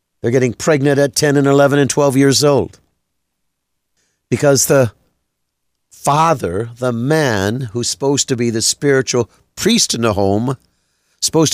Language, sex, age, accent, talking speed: English, male, 50-69, American, 140 wpm